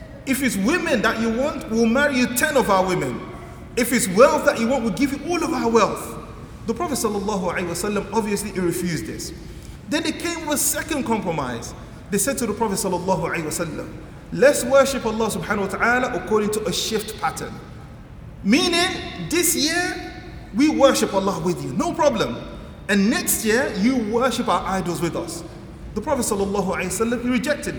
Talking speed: 175 wpm